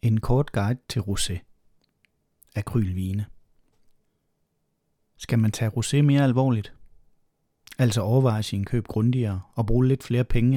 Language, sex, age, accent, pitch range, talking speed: Danish, male, 30-49, native, 105-125 Hz, 125 wpm